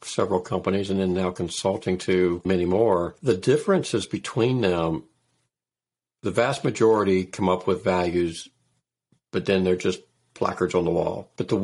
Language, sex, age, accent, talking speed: English, male, 60-79, American, 155 wpm